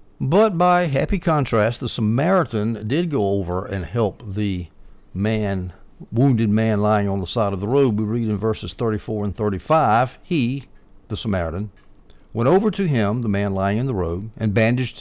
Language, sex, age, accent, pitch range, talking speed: English, male, 60-79, American, 95-125 Hz, 175 wpm